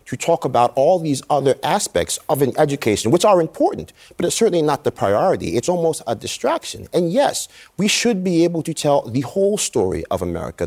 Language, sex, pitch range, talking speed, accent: English, male, 115-160 Hz, 200 wpm, American